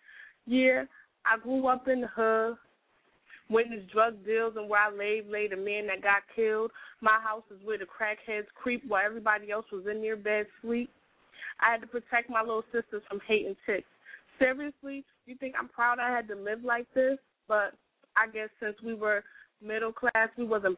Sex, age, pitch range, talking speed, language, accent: female, 20-39, 210-245 Hz, 190 wpm, English, American